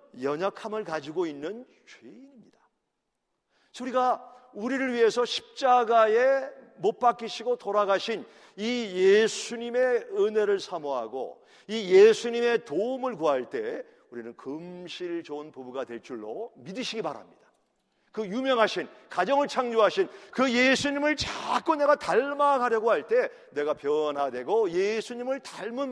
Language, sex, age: Korean, male, 40-59